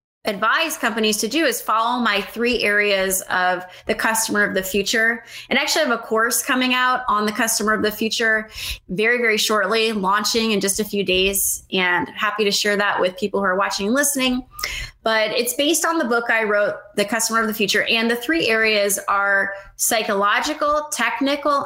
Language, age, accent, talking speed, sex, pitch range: English, 20-39, American, 195 wpm, female, 205-260 Hz